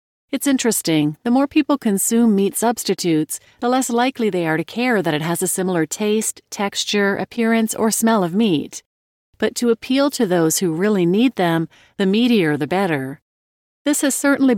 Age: 40-59